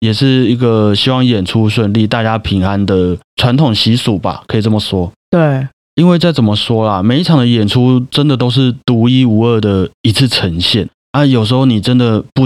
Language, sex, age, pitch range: Chinese, male, 30-49, 105-130 Hz